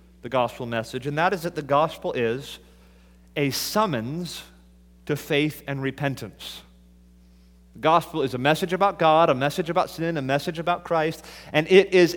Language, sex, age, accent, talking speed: English, male, 30-49, American, 170 wpm